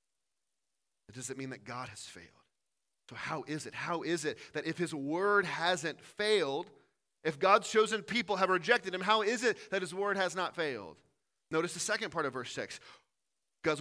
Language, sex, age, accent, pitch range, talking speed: English, male, 30-49, American, 160-205 Hz, 195 wpm